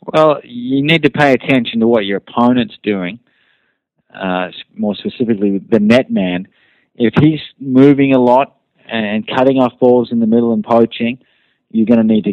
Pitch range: 105-130 Hz